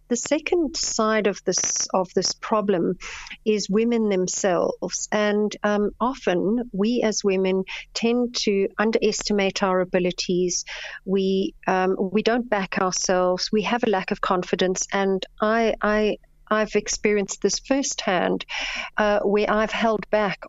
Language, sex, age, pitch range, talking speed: English, female, 50-69, 190-220 Hz, 135 wpm